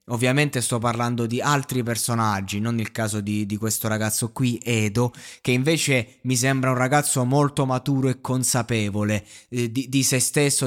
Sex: male